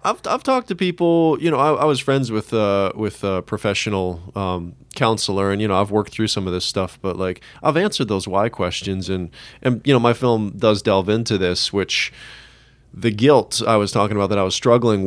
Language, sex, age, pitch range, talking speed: English, male, 20-39, 95-120 Hz, 225 wpm